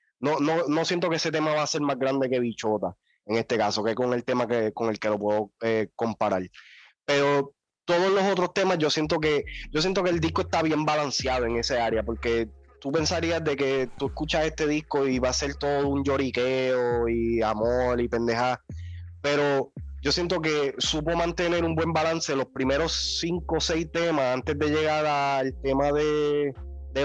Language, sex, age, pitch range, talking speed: Spanish, male, 20-39, 125-155 Hz, 200 wpm